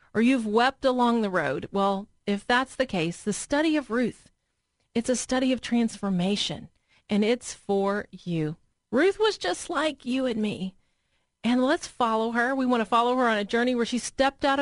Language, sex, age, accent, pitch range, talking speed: English, female, 40-59, American, 195-255 Hz, 195 wpm